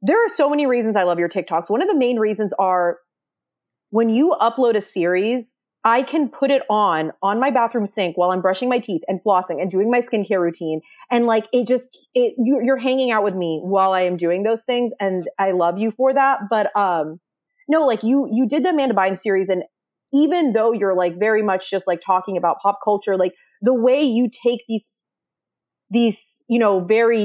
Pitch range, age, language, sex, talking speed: 185-240 Hz, 30-49, English, female, 210 wpm